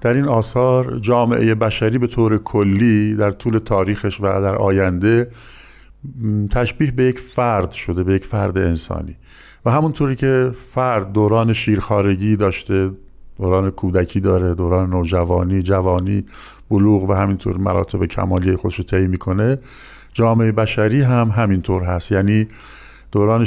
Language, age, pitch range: Persian, 50-69, 95-115 Hz